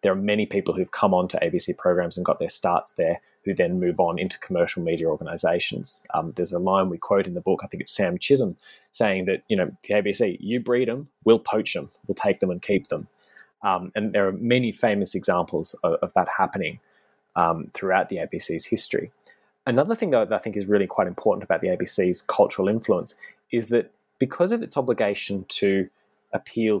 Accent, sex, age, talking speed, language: Australian, male, 20-39, 205 wpm, English